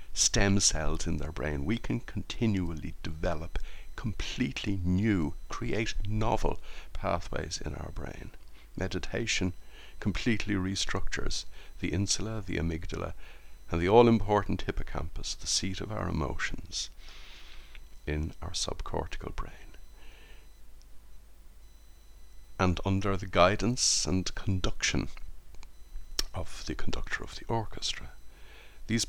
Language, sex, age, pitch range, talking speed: English, male, 60-79, 80-100 Hz, 105 wpm